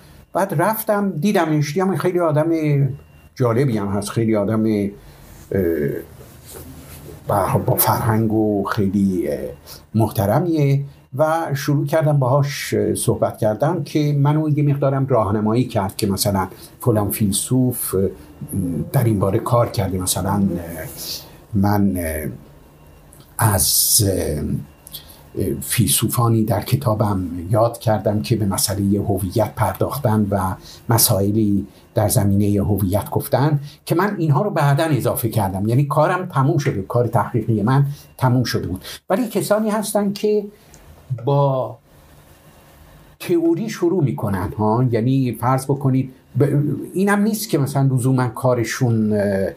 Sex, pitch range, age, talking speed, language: male, 100-145 Hz, 50-69, 115 wpm, Persian